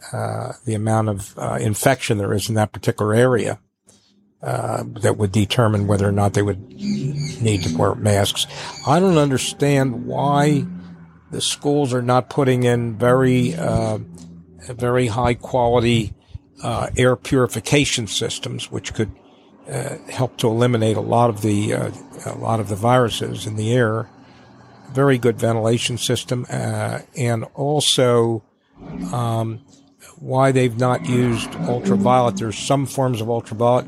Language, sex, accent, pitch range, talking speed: English, male, American, 110-125 Hz, 145 wpm